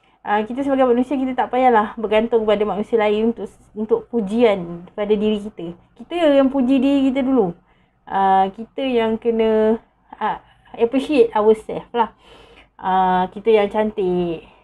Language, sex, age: Malay, female, 30-49